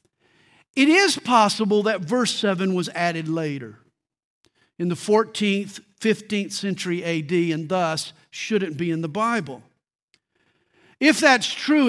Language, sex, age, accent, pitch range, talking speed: English, male, 50-69, American, 160-220 Hz, 125 wpm